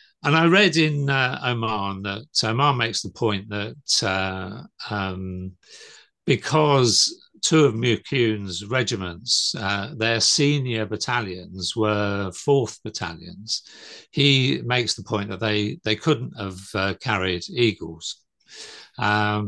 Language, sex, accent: English, male, British